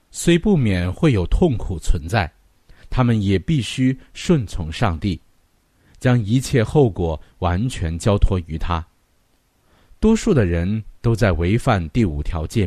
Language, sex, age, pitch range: Chinese, male, 50-69, 85-125 Hz